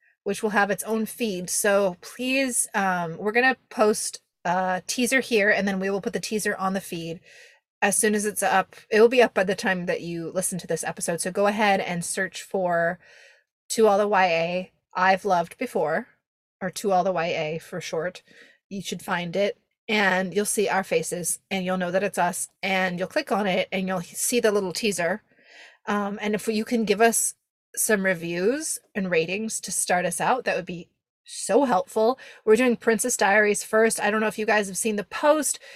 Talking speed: 210 wpm